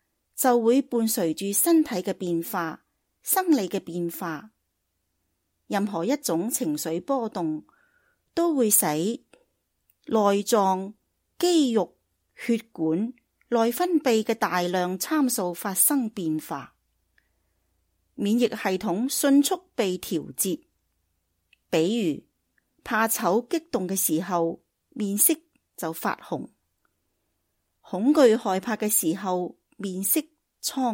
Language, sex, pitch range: English, female, 175-255 Hz